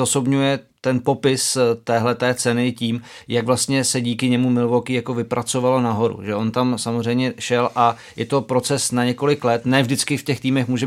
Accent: native